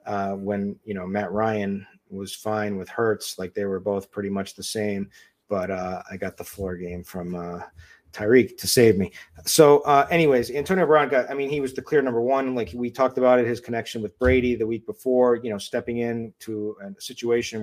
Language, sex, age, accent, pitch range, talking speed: English, male, 30-49, American, 105-125 Hz, 220 wpm